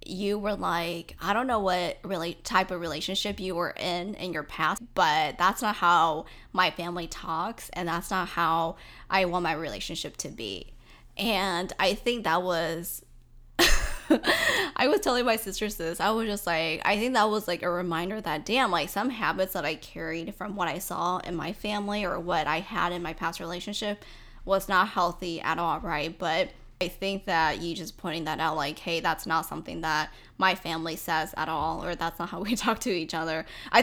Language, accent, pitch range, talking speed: English, American, 170-205 Hz, 200 wpm